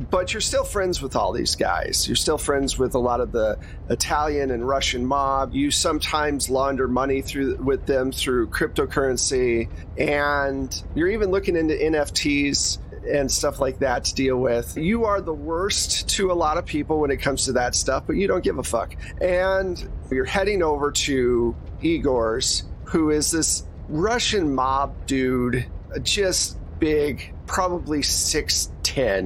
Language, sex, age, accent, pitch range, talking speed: English, male, 40-59, American, 125-160 Hz, 160 wpm